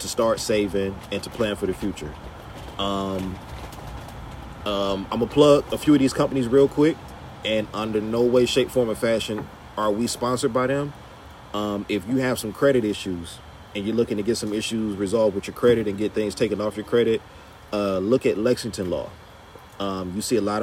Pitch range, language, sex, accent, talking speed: 95-115 Hz, English, male, American, 200 wpm